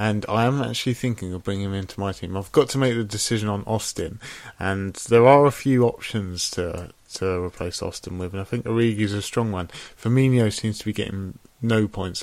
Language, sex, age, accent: English, male, 20-39, British